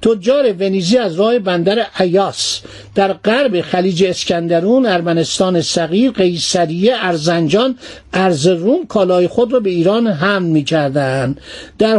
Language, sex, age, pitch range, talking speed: Persian, male, 50-69, 175-220 Hz, 115 wpm